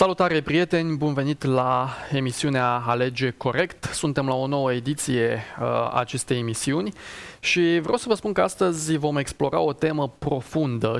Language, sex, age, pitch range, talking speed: Romanian, male, 20-39, 130-170 Hz, 145 wpm